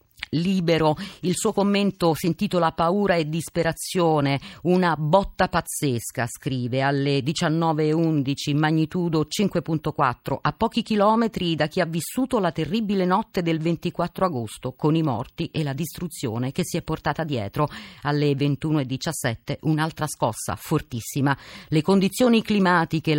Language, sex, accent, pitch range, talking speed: Italian, female, native, 145-180 Hz, 125 wpm